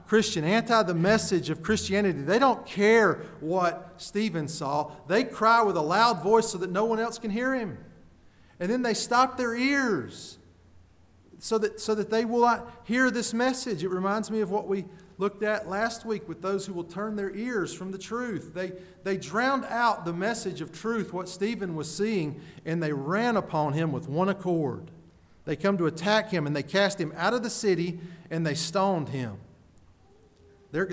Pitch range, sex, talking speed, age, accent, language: 125-195 Hz, male, 195 wpm, 40-59, American, English